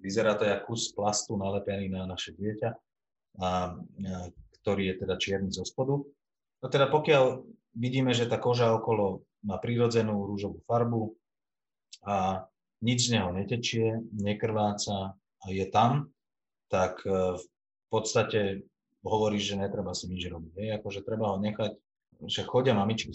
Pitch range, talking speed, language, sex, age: 95-115 Hz, 145 wpm, Slovak, male, 30-49